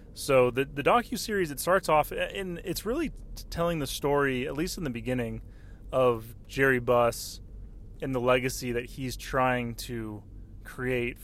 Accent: American